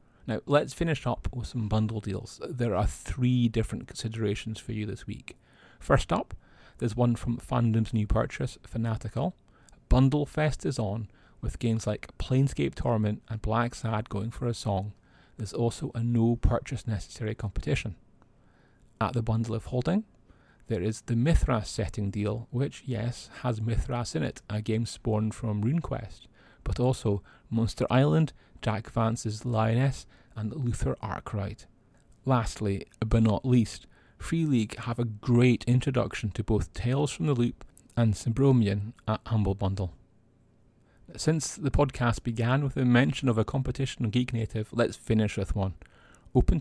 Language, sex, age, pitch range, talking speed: English, male, 30-49, 110-125 Hz, 155 wpm